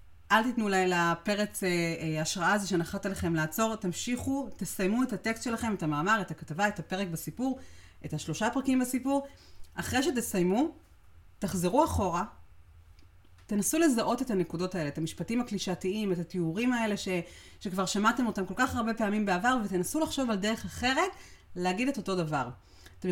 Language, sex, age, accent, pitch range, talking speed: Hebrew, female, 30-49, native, 165-230 Hz, 160 wpm